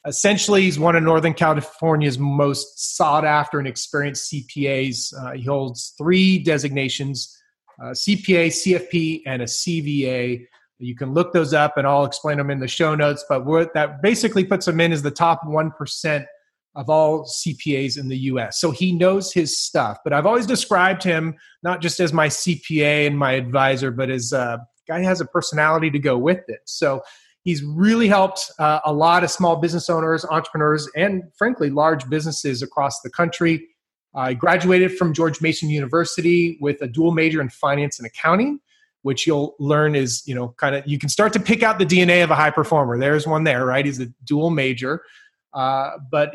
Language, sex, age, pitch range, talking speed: English, male, 30-49, 140-175 Hz, 190 wpm